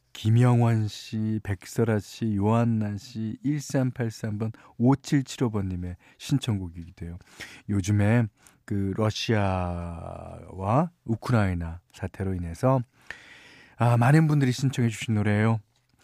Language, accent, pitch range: Korean, native, 100-140 Hz